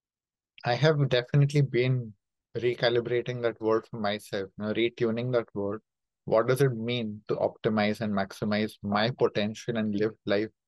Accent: Indian